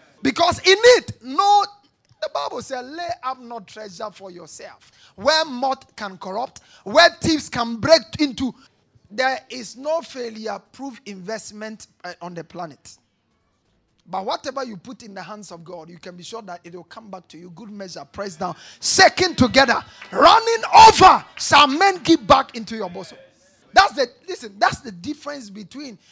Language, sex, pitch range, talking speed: English, male, 190-290 Hz, 170 wpm